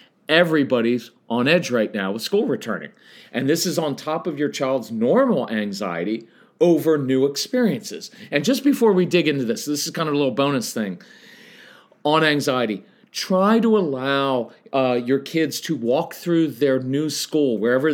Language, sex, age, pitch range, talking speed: English, male, 40-59, 135-200 Hz, 170 wpm